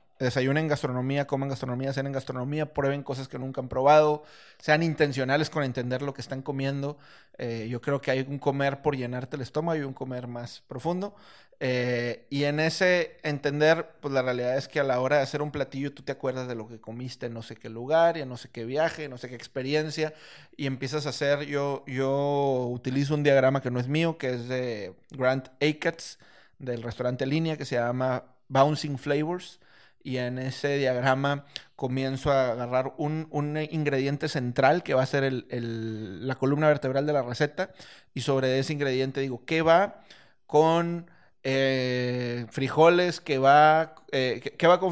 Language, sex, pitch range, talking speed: Spanish, male, 130-150 Hz, 190 wpm